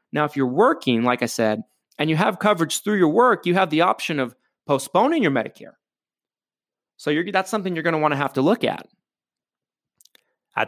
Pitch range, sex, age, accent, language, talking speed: 130-210 Hz, male, 30-49, American, English, 195 wpm